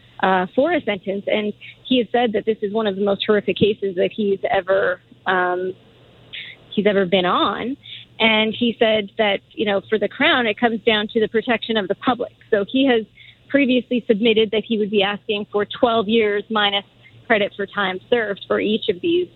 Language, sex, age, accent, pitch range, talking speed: English, female, 30-49, American, 195-225 Hz, 200 wpm